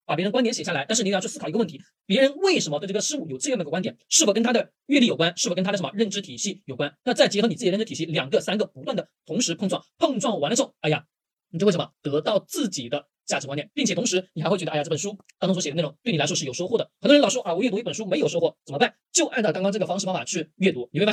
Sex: male